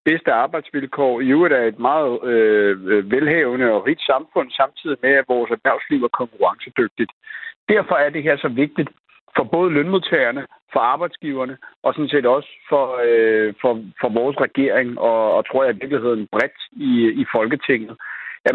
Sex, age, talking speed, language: male, 60-79, 170 wpm, Danish